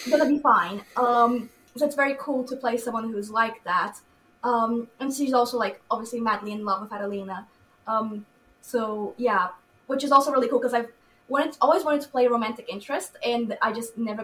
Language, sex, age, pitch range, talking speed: English, female, 20-39, 230-290 Hz, 200 wpm